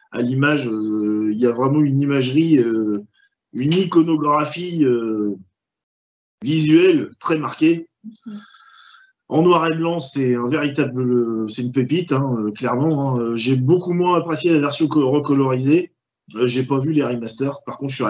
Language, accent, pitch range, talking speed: French, French, 115-150 Hz, 160 wpm